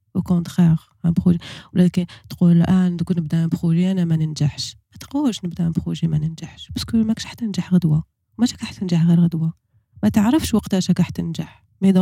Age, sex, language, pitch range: 20-39, female, French, 165-195 Hz